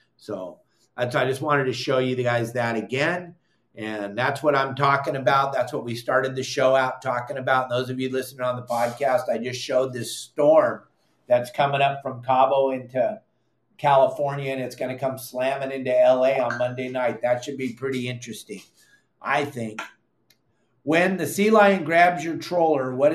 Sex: male